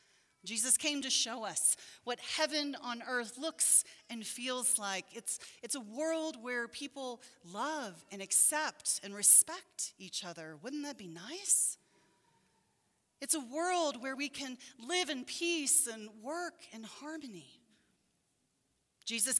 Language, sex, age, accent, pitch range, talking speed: English, female, 40-59, American, 225-290 Hz, 135 wpm